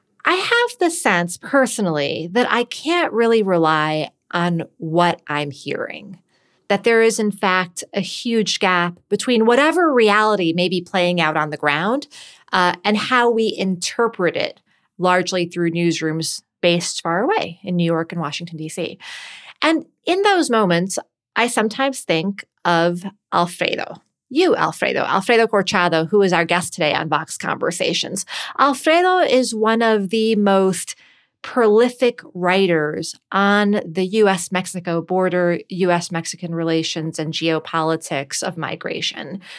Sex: female